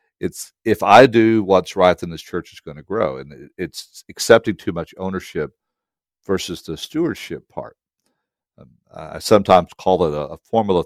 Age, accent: 50-69, American